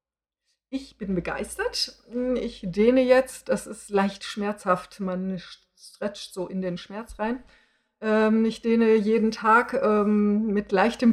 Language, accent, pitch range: English, German, 190-250 Hz